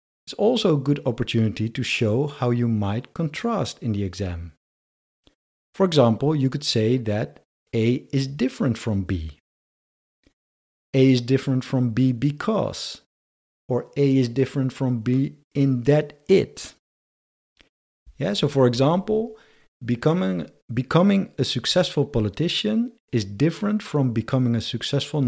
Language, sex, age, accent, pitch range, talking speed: English, male, 50-69, Dutch, 100-145 Hz, 130 wpm